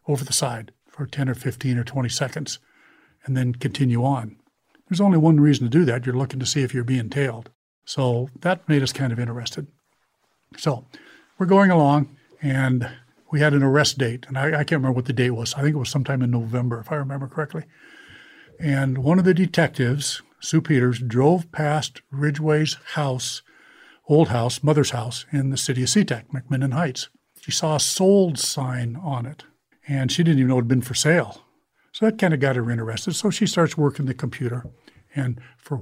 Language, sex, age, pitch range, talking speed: English, male, 60-79, 125-155 Hz, 200 wpm